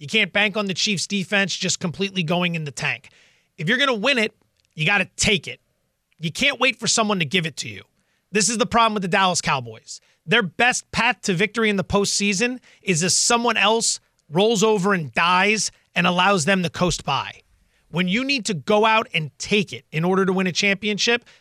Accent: American